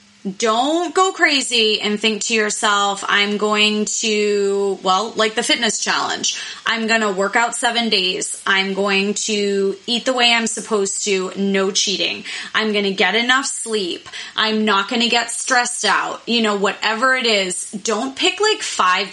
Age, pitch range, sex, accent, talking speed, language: 20-39, 195-235 Hz, female, American, 175 wpm, English